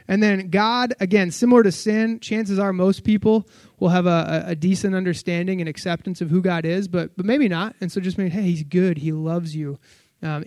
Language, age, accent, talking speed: English, 20-39, American, 220 wpm